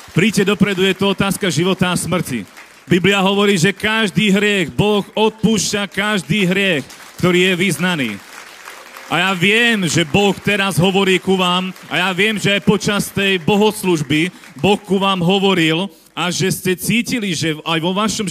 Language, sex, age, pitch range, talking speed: Slovak, male, 40-59, 170-195 Hz, 160 wpm